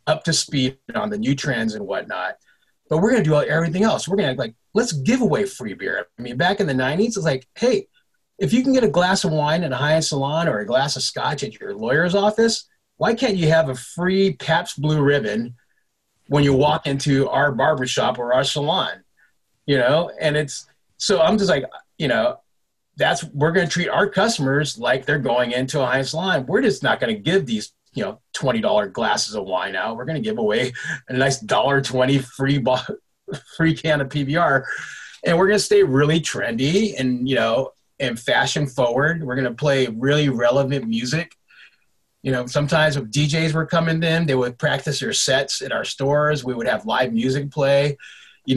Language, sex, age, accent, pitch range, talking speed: English, male, 30-49, American, 130-175 Hz, 210 wpm